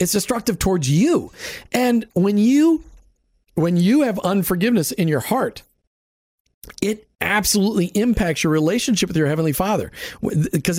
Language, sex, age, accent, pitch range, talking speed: English, male, 40-59, American, 160-225 Hz, 130 wpm